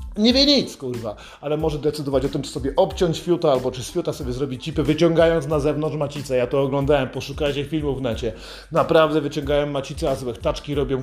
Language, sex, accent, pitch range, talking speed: Polish, male, native, 145-170 Hz, 205 wpm